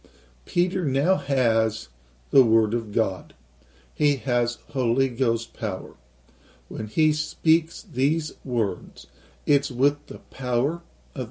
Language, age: English, 50-69